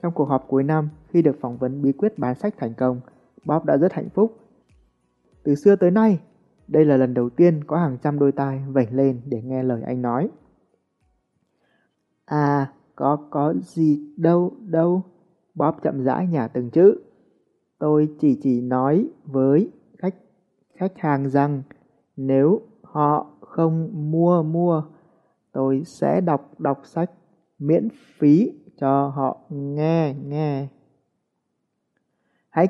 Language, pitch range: Vietnamese, 130-170 Hz